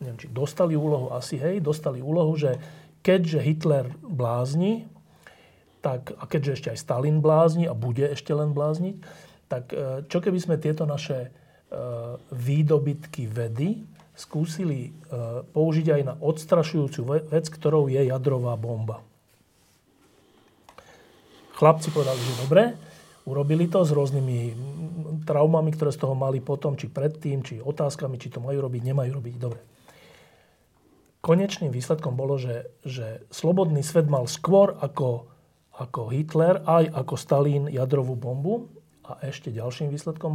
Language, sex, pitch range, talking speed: Slovak, male, 130-155 Hz, 130 wpm